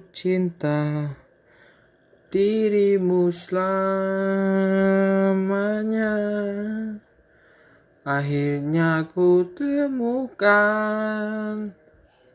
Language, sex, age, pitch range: Indonesian, male, 20-39, 170-215 Hz